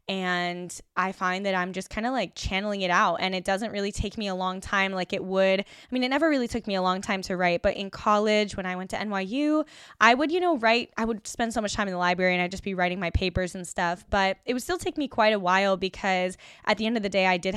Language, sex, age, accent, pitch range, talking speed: English, female, 10-29, American, 185-220 Hz, 290 wpm